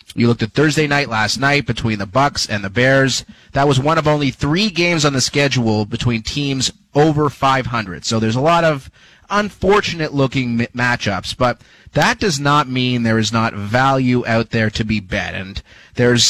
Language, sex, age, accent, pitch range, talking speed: English, male, 30-49, American, 115-145 Hz, 190 wpm